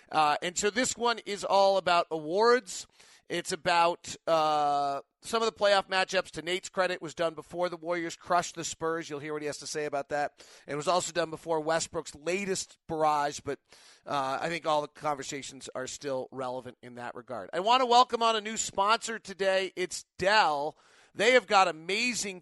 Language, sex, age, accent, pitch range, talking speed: English, male, 30-49, American, 150-190 Hz, 195 wpm